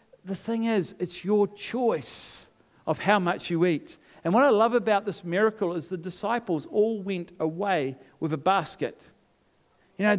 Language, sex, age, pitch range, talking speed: English, male, 50-69, 135-195 Hz, 170 wpm